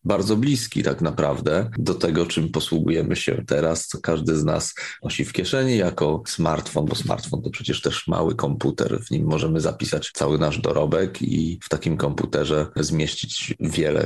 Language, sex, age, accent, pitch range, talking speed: Polish, male, 30-49, native, 80-95 Hz, 165 wpm